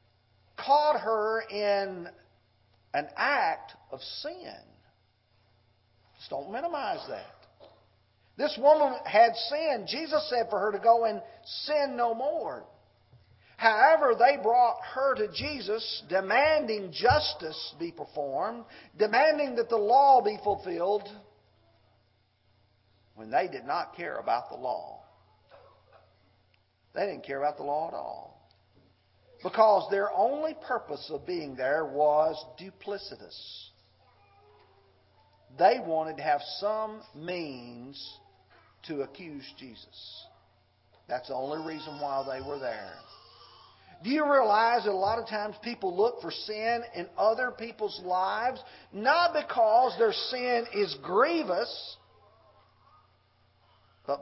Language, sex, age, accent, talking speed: English, male, 50-69, American, 115 wpm